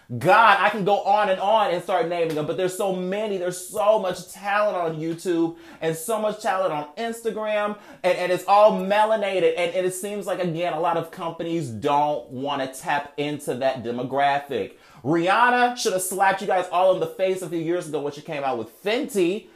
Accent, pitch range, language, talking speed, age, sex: American, 170-210 Hz, English, 210 wpm, 30-49, male